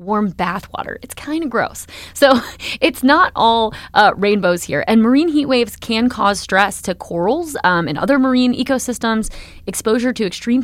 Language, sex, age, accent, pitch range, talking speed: English, female, 20-39, American, 175-215 Hz, 175 wpm